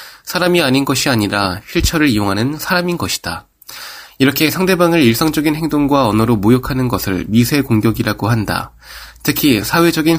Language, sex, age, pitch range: Korean, male, 20-39, 110-155 Hz